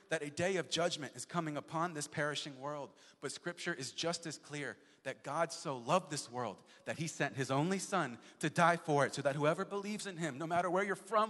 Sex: male